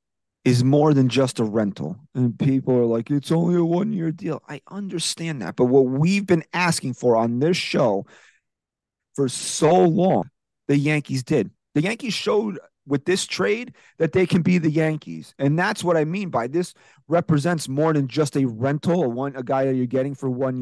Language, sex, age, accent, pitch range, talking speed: English, male, 30-49, American, 120-165 Hz, 190 wpm